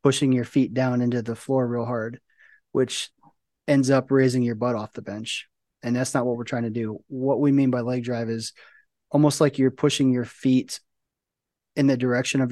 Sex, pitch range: male, 120-135 Hz